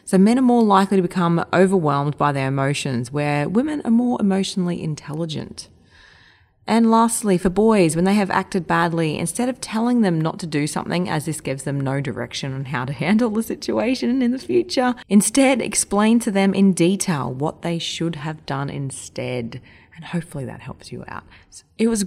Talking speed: 190 wpm